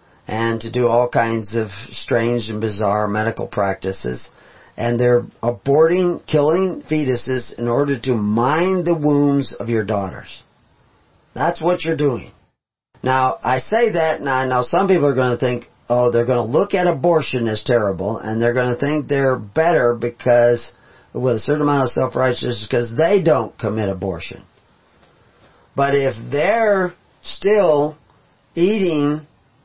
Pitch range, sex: 115-150 Hz, male